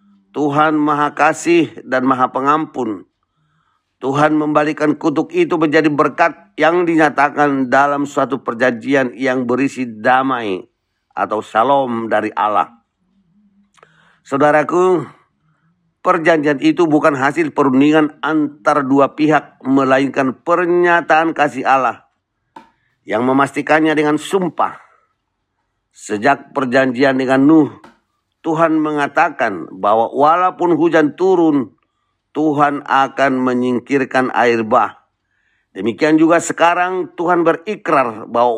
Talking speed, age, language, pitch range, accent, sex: 95 wpm, 50-69, Indonesian, 135-170 Hz, native, male